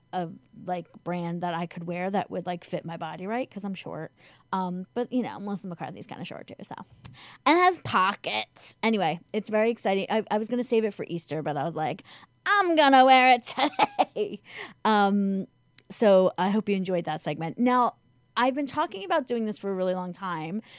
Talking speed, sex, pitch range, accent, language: 215 wpm, female, 175-235 Hz, American, English